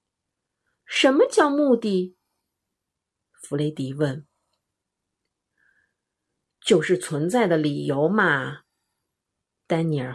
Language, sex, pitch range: Chinese, female, 150-215 Hz